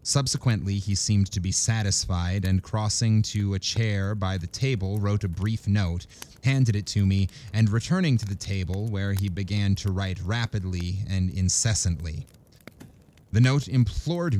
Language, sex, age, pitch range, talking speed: English, male, 30-49, 95-115 Hz, 160 wpm